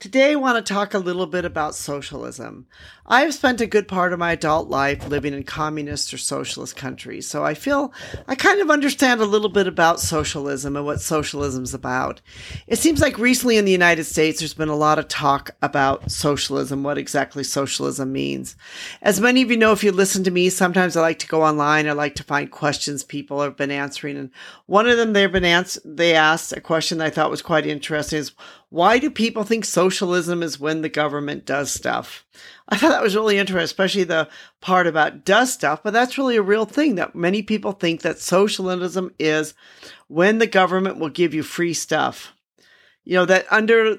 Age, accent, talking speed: 40-59, American, 210 wpm